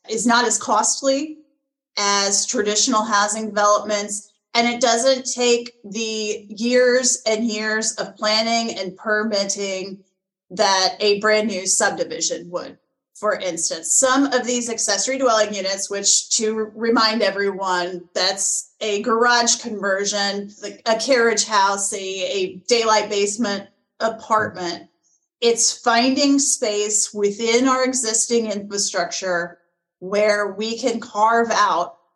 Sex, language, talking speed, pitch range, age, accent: female, English, 115 wpm, 195-235 Hz, 30-49, American